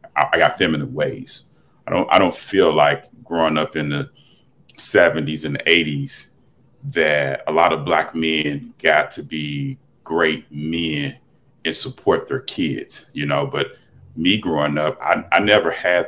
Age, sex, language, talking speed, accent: 40-59, male, English, 155 wpm, American